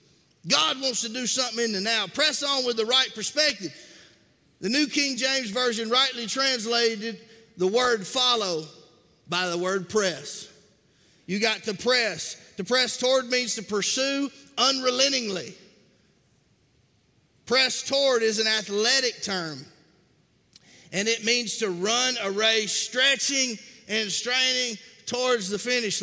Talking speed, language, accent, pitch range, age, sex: 135 wpm, English, American, 185-245 Hz, 40-59, male